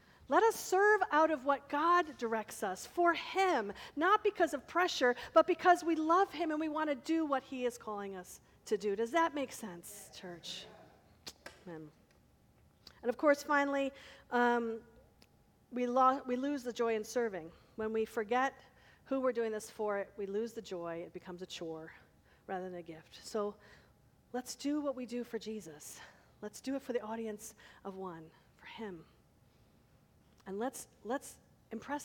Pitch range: 215-285 Hz